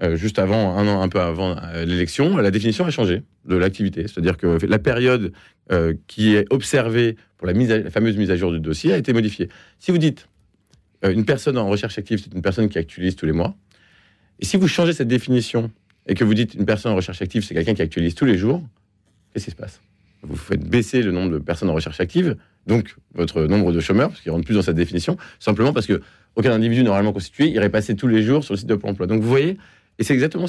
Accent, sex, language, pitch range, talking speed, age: French, male, French, 90-120 Hz, 240 wpm, 30-49